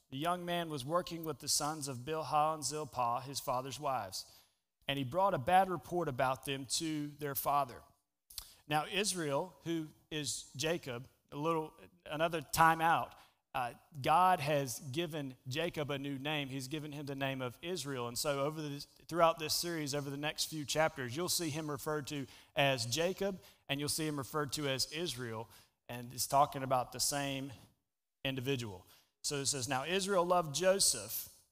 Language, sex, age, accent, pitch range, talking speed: English, male, 40-59, American, 130-155 Hz, 175 wpm